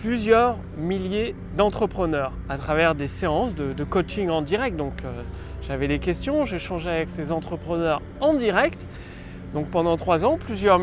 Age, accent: 20-39, French